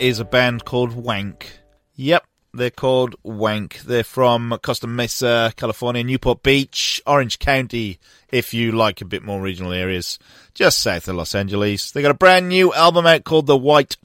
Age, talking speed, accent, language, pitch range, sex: 30-49, 175 wpm, British, English, 110-150 Hz, male